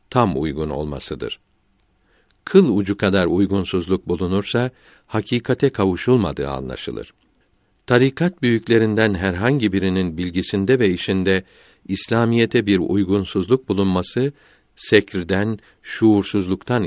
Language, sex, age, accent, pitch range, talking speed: Turkish, male, 60-79, native, 95-120 Hz, 85 wpm